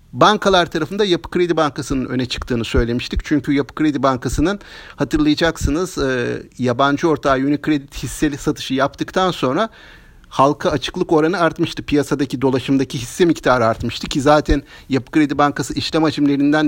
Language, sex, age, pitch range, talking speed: Turkish, male, 50-69, 140-180 Hz, 130 wpm